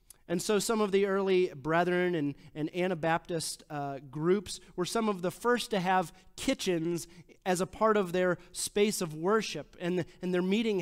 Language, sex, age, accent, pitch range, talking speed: English, male, 30-49, American, 160-200 Hz, 175 wpm